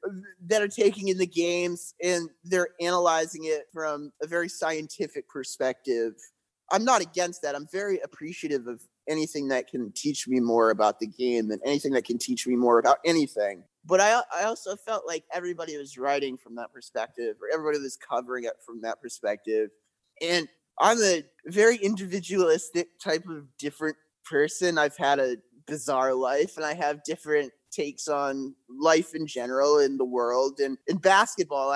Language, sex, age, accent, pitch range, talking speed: English, male, 20-39, American, 130-170 Hz, 170 wpm